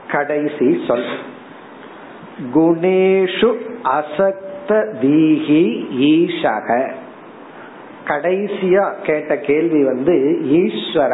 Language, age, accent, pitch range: Tamil, 50-69, native, 135-195 Hz